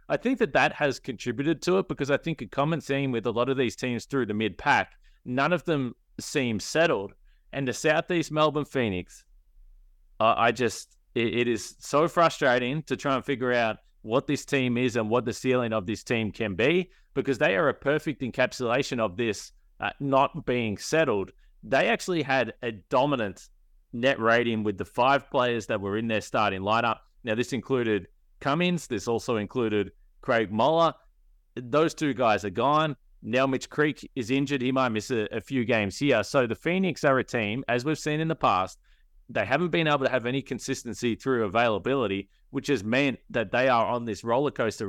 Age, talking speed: 30-49, 195 wpm